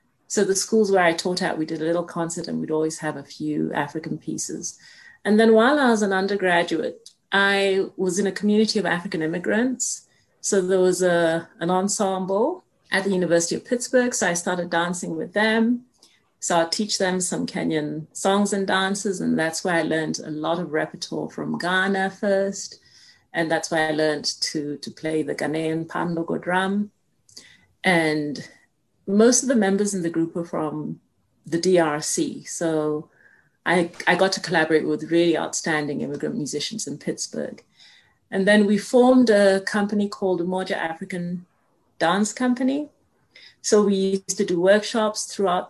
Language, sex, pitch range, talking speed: English, female, 165-205 Hz, 170 wpm